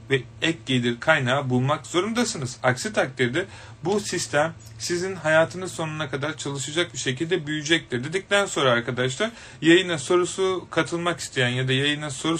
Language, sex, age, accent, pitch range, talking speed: Turkish, male, 30-49, native, 130-165 Hz, 140 wpm